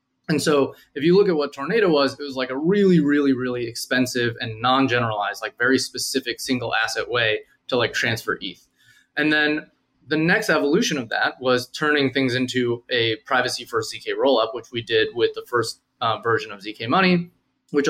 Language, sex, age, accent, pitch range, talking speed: English, male, 20-39, American, 125-155 Hz, 190 wpm